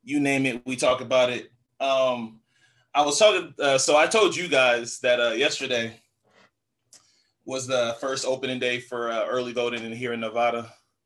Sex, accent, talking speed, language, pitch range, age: male, American, 180 wpm, English, 115-135 Hz, 20-39